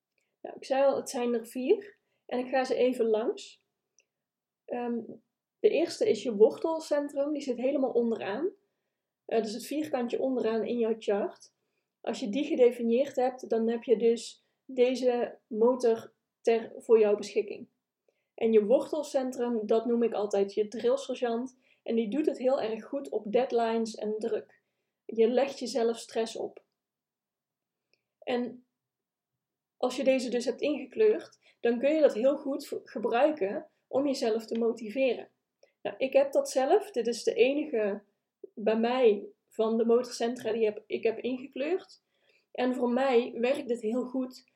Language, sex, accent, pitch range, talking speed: Dutch, female, Dutch, 230-275 Hz, 155 wpm